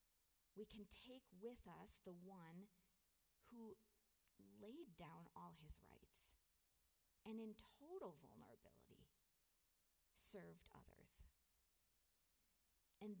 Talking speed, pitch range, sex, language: 90 wpm, 170-230 Hz, female, English